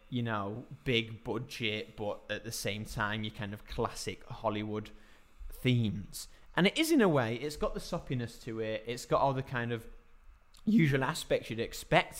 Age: 20-39